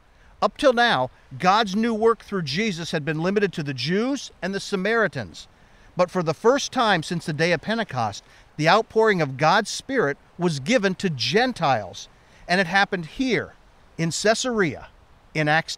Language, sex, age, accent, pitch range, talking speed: English, male, 50-69, American, 145-205 Hz, 165 wpm